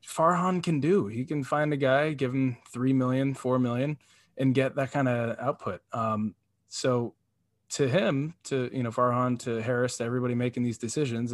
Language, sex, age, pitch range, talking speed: English, male, 20-39, 115-140 Hz, 185 wpm